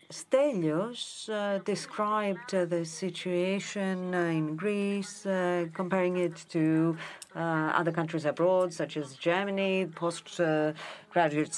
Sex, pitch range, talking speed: female, 160-205 Hz, 110 wpm